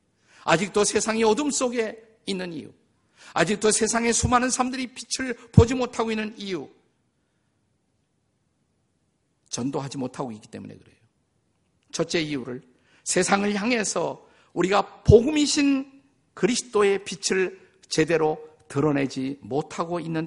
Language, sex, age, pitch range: Korean, male, 50-69, 150-220 Hz